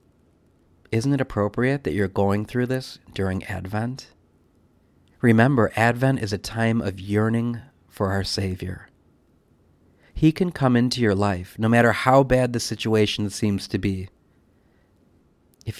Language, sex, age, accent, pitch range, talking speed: English, male, 40-59, American, 95-125 Hz, 135 wpm